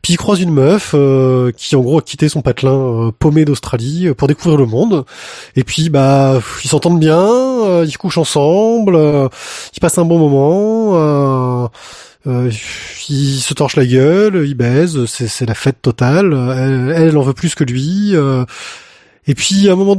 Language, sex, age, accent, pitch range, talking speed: French, male, 20-39, French, 135-185 Hz, 185 wpm